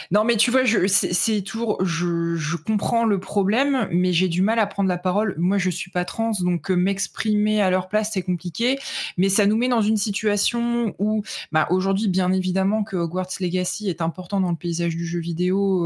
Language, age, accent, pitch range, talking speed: French, 20-39, French, 175-215 Hz, 210 wpm